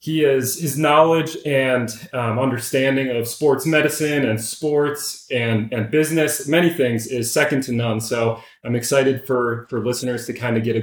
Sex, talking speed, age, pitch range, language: male, 175 wpm, 30-49, 120-150 Hz, English